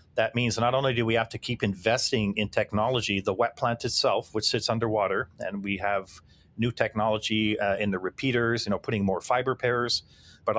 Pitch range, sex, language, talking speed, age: 100-115 Hz, male, English, 200 wpm, 40-59